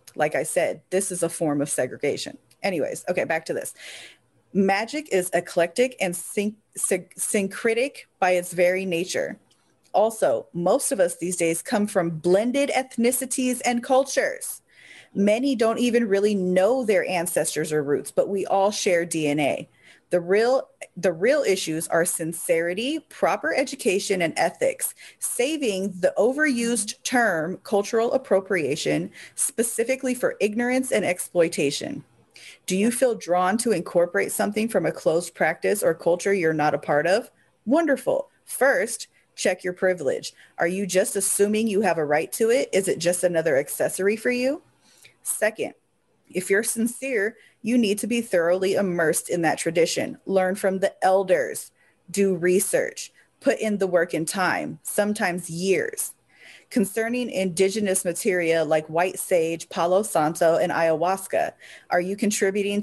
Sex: female